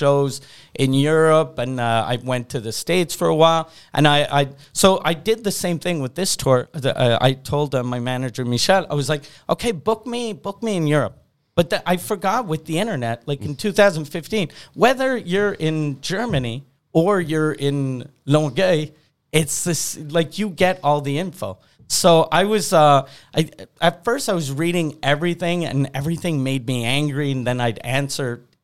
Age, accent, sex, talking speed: 40-59, American, male, 180 wpm